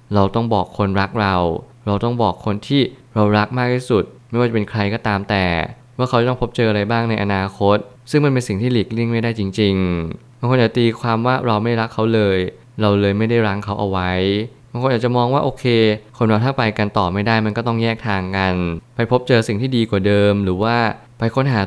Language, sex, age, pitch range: Thai, male, 20-39, 100-120 Hz